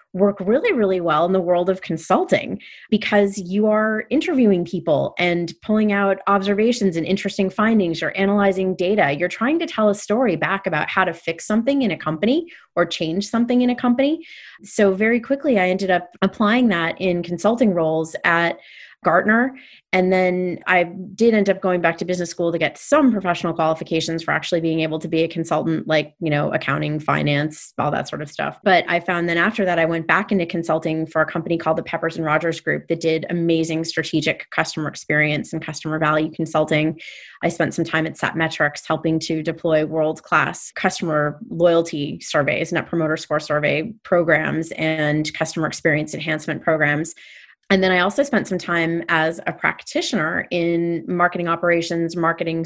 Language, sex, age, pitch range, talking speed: English, female, 30-49, 160-190 Hz, 180 wpm